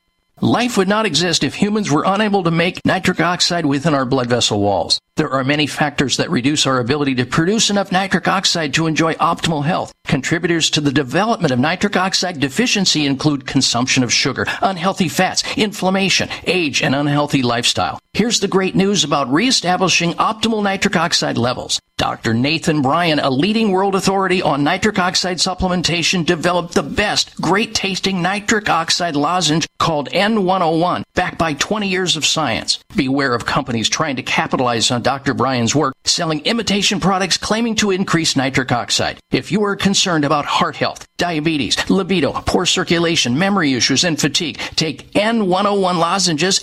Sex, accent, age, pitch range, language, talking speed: male, American, 50-69, 145-195 Hz, English, 160 wpm